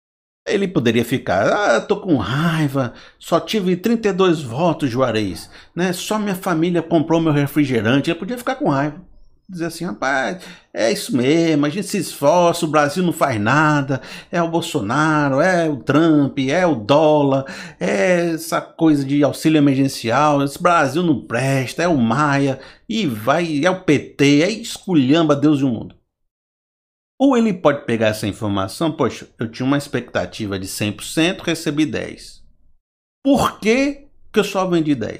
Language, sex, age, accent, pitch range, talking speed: Portuguese, male, 60-79, Brazilian, 135-180 Hz, 160 wpm